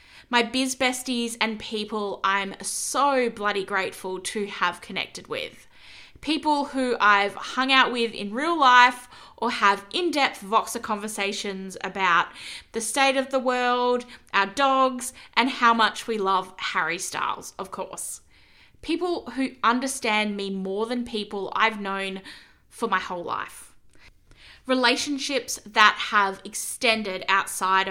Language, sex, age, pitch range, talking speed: English, female, 20-39, 200-265 Hz, 135 wpm